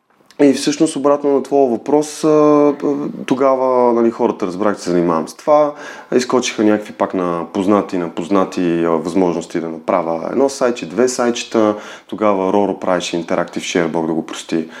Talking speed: 145 wpm